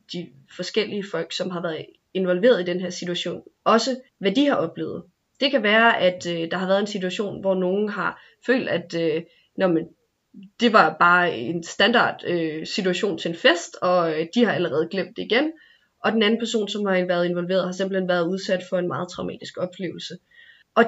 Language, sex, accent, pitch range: Danish, female, native, 175-225 Hz